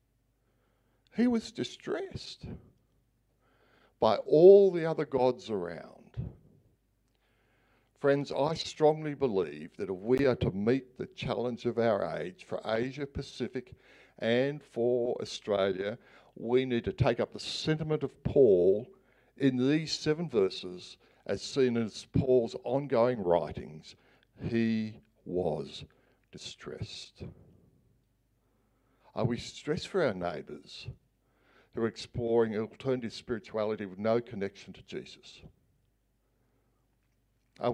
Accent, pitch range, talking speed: Australian, 115-130 Hz, 110 wpm